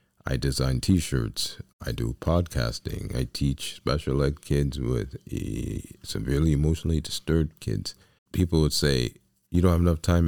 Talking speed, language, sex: 140 wpm, English, male